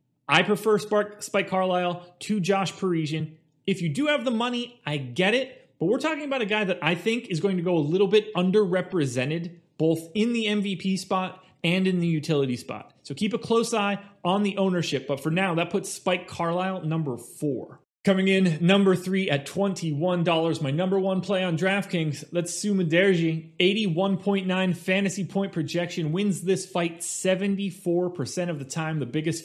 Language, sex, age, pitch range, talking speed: English, male, 30-49, 150-190 Hz, 180 wpm